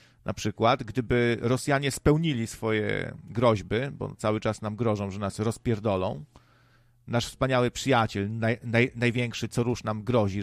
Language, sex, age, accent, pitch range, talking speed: Polish, male, 40-59, native, 105-135 Hz, 130 wpm